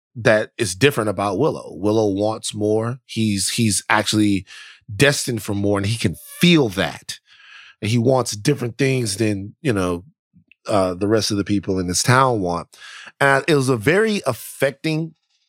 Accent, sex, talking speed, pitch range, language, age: American, male, 165 wpm, 110-150 Hz, English, 20-39